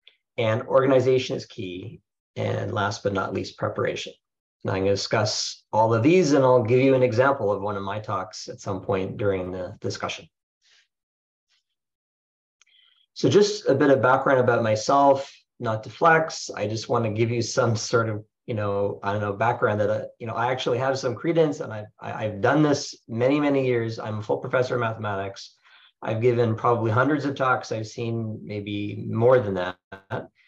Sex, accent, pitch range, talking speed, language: male, American, 105-130 Hz, 190 wpm, English